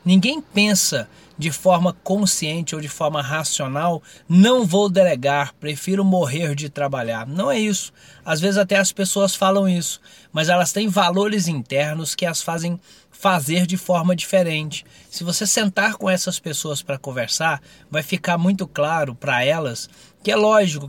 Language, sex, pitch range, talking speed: Portuguese, male, 150-185 Hz, 160 wpm